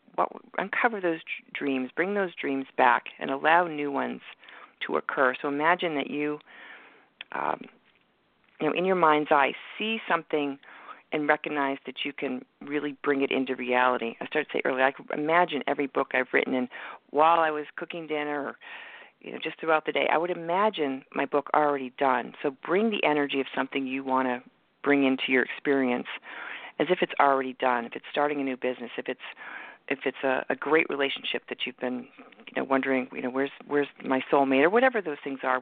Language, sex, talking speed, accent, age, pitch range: English, female, 195 wpm, American, 50-69, 130-160 Hz